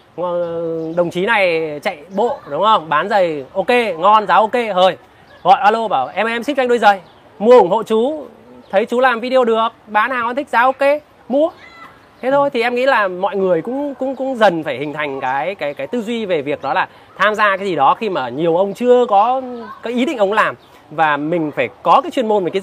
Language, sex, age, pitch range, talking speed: Vietnamese, male, 20-39, 185-255 Hz, 235 wpm